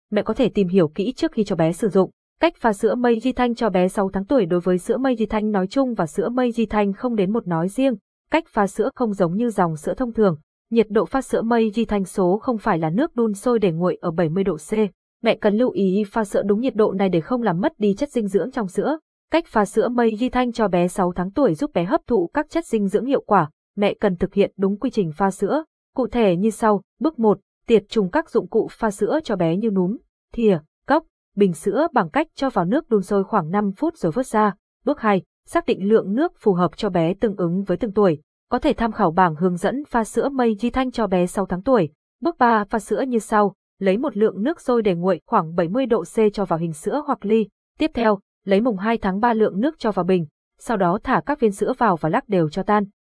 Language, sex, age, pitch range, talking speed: Vietnamese, female, 20-39, 195-245 Hz, 265 wpm